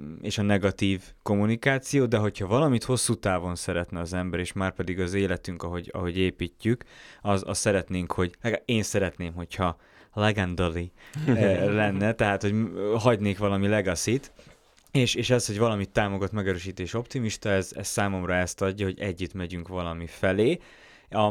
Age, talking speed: 20-39, 145 wpm